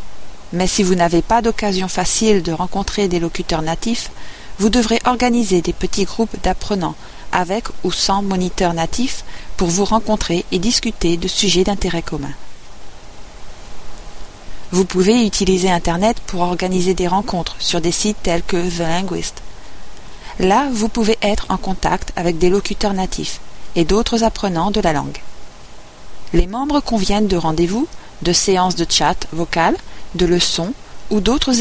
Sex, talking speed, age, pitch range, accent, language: female, 150 wpm, 40-59, 170-215 Hz, French, English